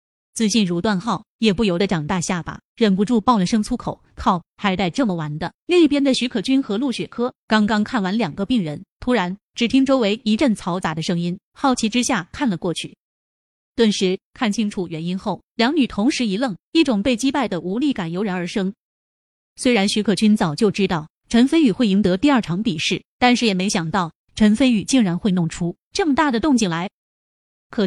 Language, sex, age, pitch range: Chinese, female, 30-49, 185-240 Hz